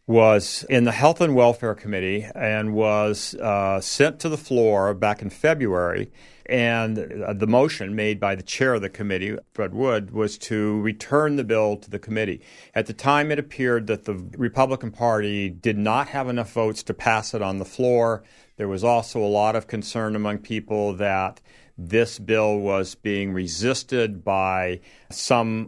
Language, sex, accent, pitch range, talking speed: English, male, American, 100-115 Hz, 175 wpm